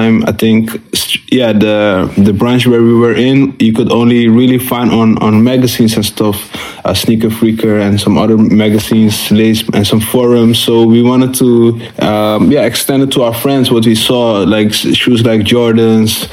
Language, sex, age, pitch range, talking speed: French, male, 20-39, 110-125 Hz, 175 wpm